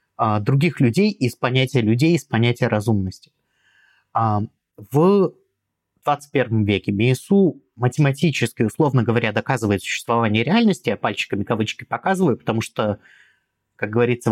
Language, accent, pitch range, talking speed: Russian, native, 115-160 Hz, 110 wpm